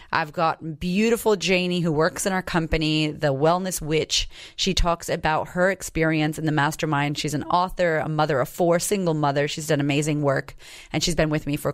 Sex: female